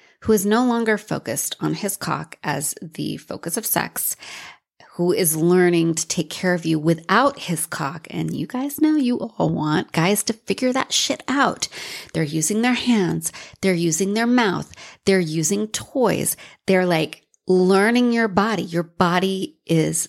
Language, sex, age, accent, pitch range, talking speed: English, female, 30-49, American, 170-240 Hz, 165 wpm